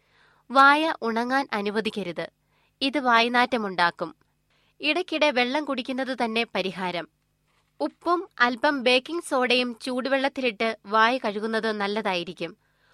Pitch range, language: 215-270 Hz, Malayalam